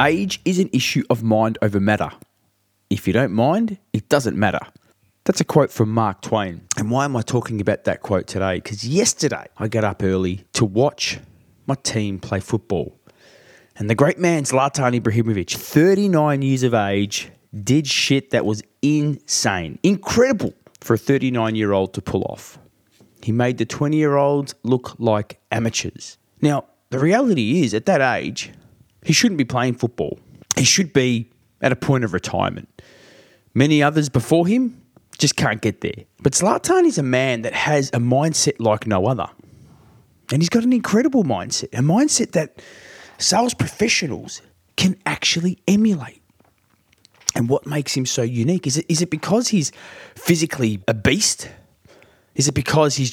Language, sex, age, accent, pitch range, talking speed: English, male, 20-39, Australian, 110-155 Hz, 160 wpm